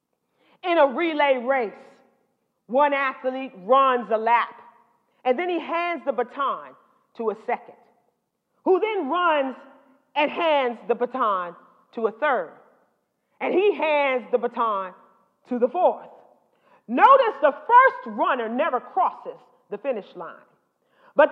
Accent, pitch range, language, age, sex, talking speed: American, 270-380 Hz, English, 40-59, female, 130 wpm